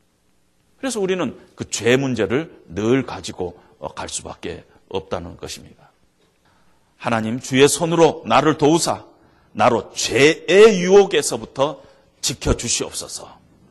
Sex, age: male, 40-59